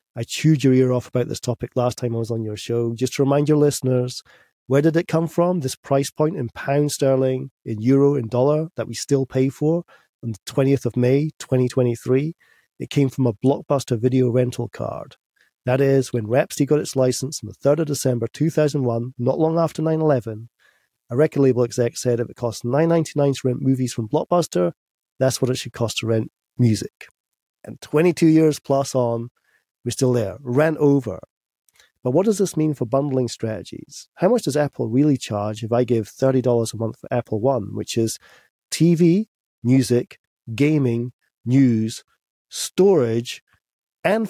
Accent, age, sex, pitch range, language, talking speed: British, 40-59, male, 120-145 Hz, English, 180 wpm